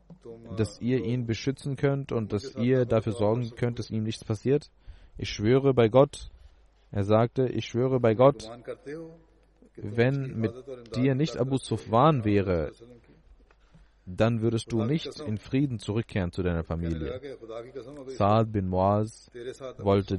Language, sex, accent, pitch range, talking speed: German, male, German, 100-120 Hz, 135 wpm